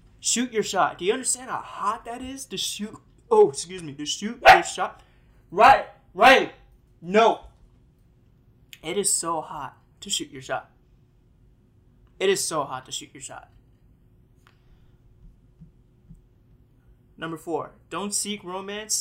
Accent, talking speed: American, 135 wpm